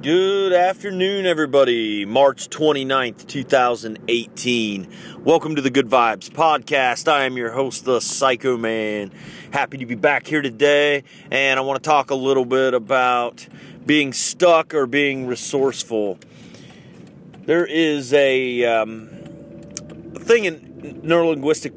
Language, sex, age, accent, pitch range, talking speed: English, male, 30-49, American, 120-140 Hz, 125 wpm